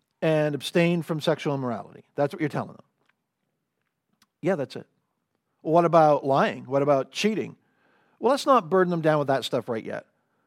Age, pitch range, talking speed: 50-69, 145-190 Hz, 170 wpm